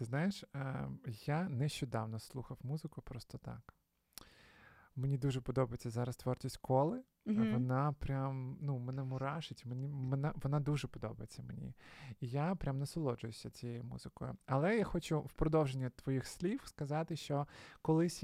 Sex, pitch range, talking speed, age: male, 135-165 Hz, 130 wpm, 20-39